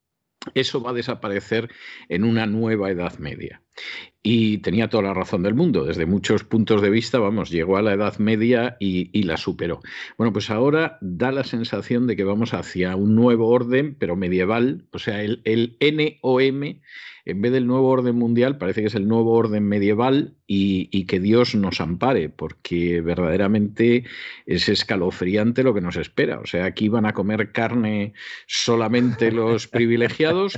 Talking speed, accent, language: 175 wpm, Spanish, Spanish